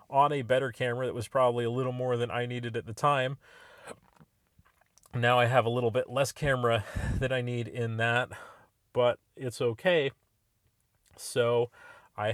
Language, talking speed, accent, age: English, 165 wpm, American, 30-49